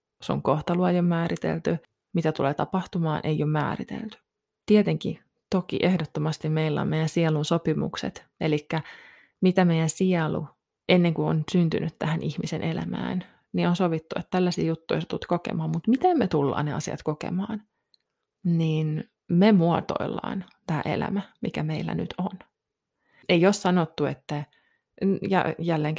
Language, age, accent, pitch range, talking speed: Finnish, 20-39, native, 155-195 Hz, 135 wpm